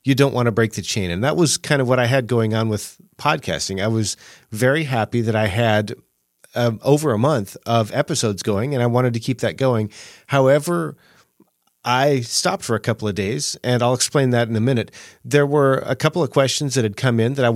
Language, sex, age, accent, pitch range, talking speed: English, male, 40-59, American, 110-130 Hz, 230 wpm